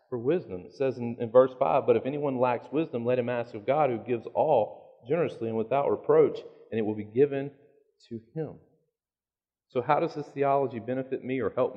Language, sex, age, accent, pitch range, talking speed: English, male, 40-59, American, 105-135 Hz, 210 wpm